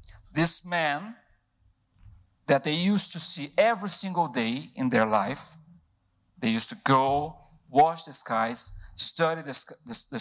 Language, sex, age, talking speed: English, male, 50-69, 135 wpm